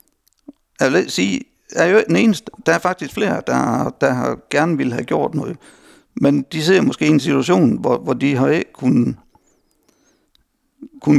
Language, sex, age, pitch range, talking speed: Danish, male, 60-79, 140-210 Hz, 165 wpm